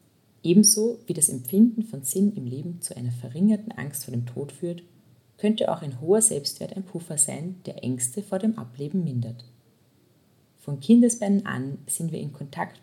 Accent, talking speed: German, 175 wpm